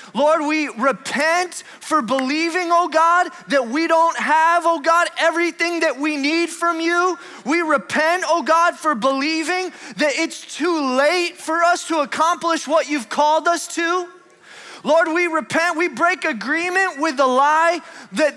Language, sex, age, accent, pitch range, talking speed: English, male, 20-39, American, 320-360 Hz, 155 wpm